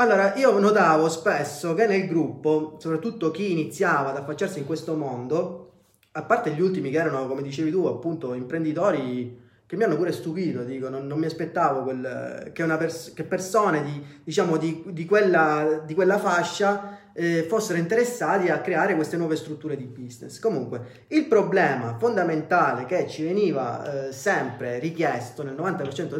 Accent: native